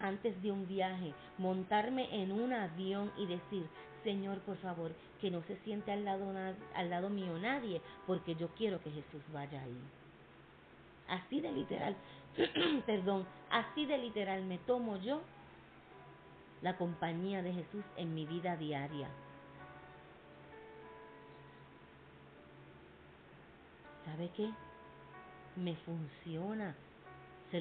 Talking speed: 115 wpm